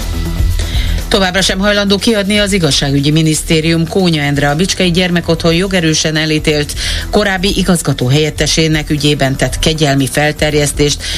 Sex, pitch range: female, 140-185 Hz